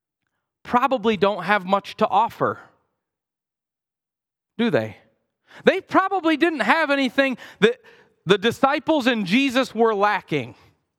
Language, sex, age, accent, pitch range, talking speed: English, male, 40-59, American, 200-290 Hz, 110 wpm